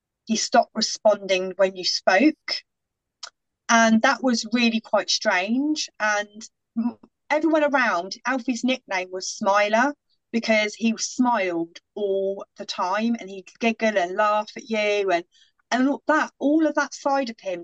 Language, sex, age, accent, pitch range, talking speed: English, female, 30-49, British, 205-290 Hz, 145 wpm